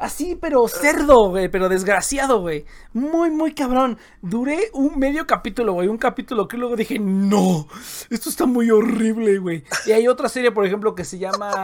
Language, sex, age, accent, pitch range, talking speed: Spanish, male, 30-49, Mexican, 170-235 Hz, 185 wpm